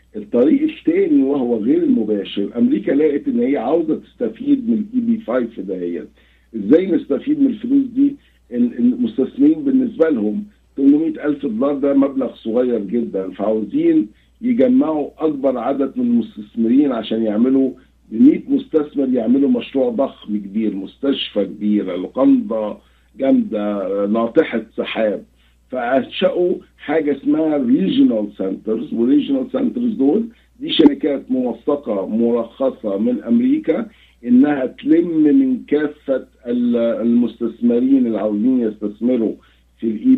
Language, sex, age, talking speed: Arabic, male, 50-69, 110 wpm